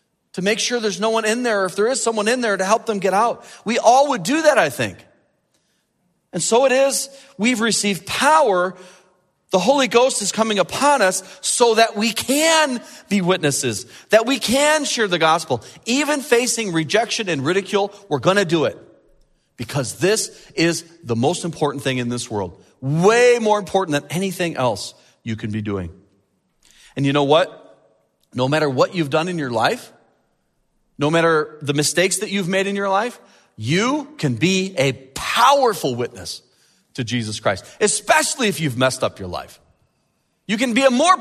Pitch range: 160-235 Hz